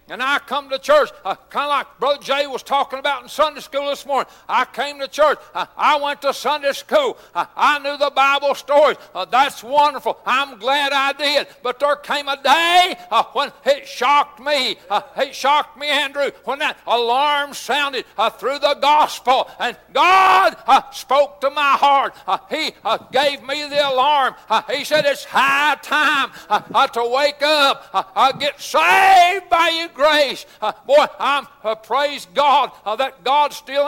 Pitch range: 275-300 Hz